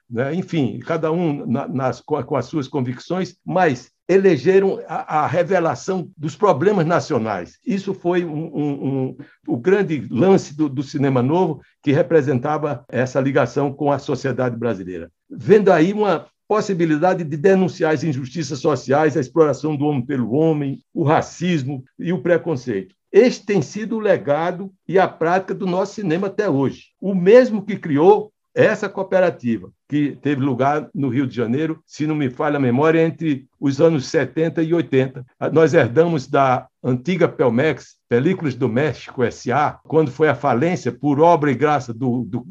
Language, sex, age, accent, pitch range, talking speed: Portuguese, male, 60-79, Brazilian, 130-180 Hz, 155 wpm